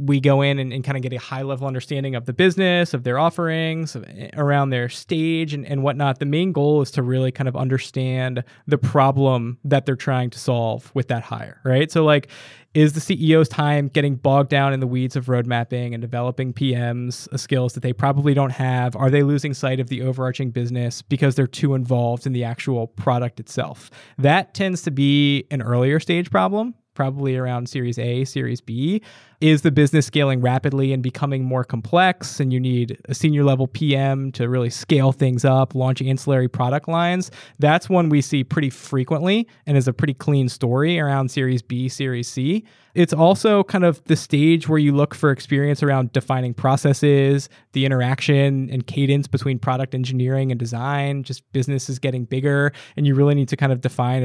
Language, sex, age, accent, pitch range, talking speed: English, male, 20-39, American, 130-145 Hz, 200 wpm